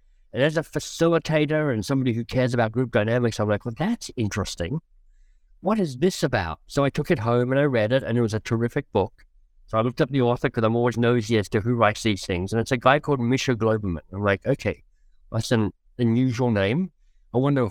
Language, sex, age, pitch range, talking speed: English, male, 60-79, 105-135 Hz, 225 wpm